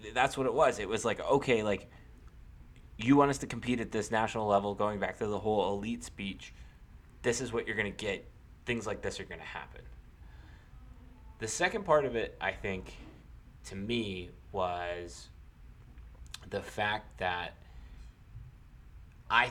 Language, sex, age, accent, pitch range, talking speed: English, male, 20-39, American, 85-115 Hz, 165 wpm